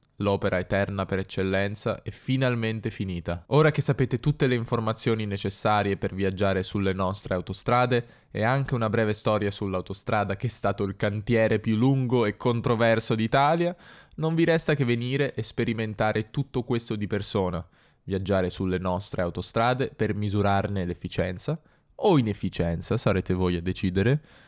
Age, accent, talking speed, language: 10-29, native, 145 wpm, Italian